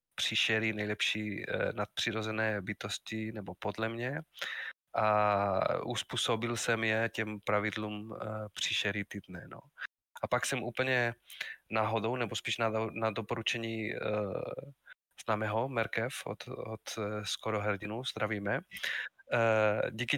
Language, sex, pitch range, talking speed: Czech, male, 105-125 Hz, 115 wpm